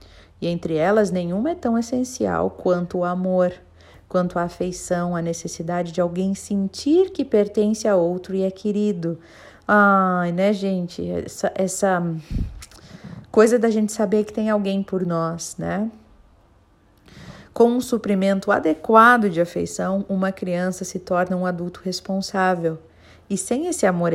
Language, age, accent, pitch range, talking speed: Portuguese, 40-59, Brazilian, 160-195 Hz, 140 wpm